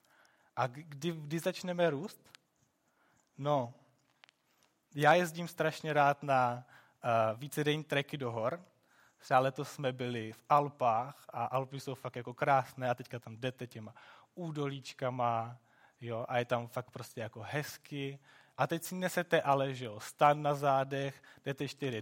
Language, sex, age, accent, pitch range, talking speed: Czech, male, 20-39, native, 135-160 Hz, 150 wpm